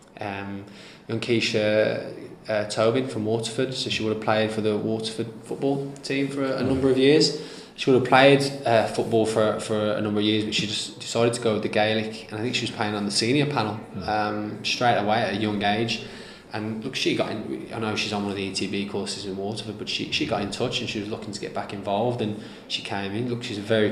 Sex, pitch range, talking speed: male, 100-110 Hz, 245 wpm